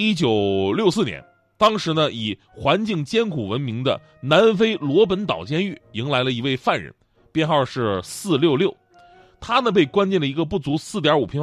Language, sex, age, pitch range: Chinese, male, 30-49, 120-190 Hz